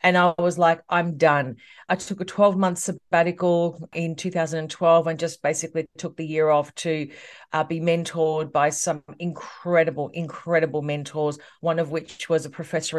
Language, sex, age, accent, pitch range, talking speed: English, female, 40-59, Australian, 160-185 Hz, 160 wpm